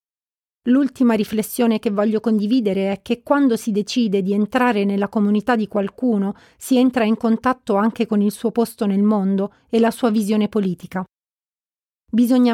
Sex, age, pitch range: female, 40-59, 205-235 Hz